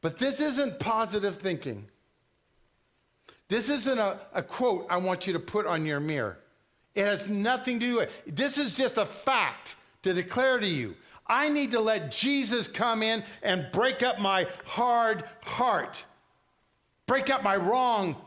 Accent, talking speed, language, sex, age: American, 170 wpm, English, male, 50-69